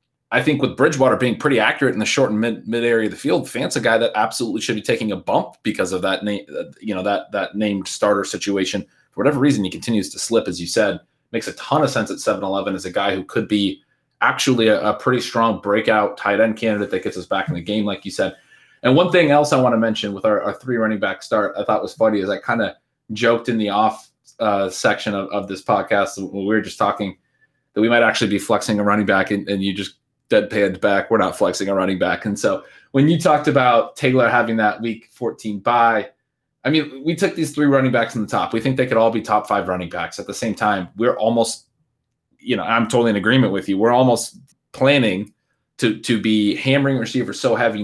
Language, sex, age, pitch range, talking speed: English, male, 20-39, 105-135 Hz, 250 wpm